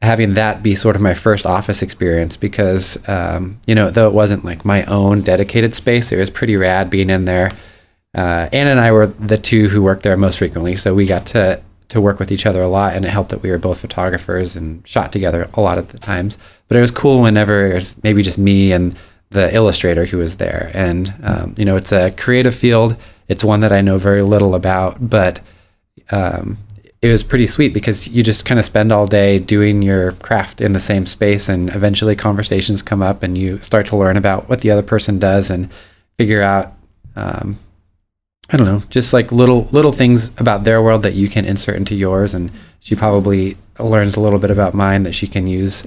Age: 30-49